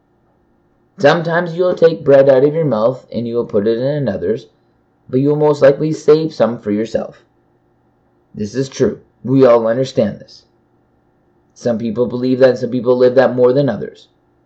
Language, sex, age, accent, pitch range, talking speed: English, male, 20-39, American, 115-145 Hz, 165 wpm